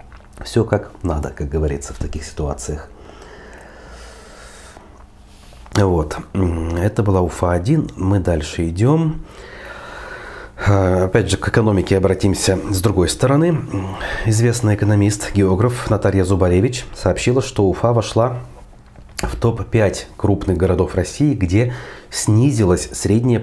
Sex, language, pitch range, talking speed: male, Russian, 95-120 Hz, 100 wpm